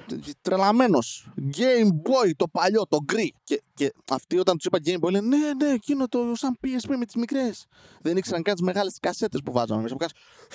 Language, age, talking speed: Greek, 20-39, 180 wpm